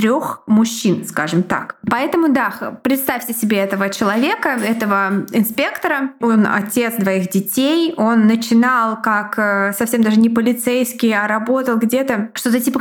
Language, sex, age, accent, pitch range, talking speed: Russian, female, 20-39, native, 205-240 Hz, 130 wpm